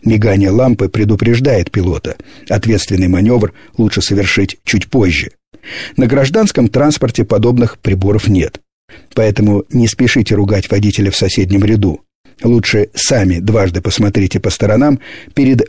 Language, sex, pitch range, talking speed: Russian, male, 100-130 Hz, 120 wpm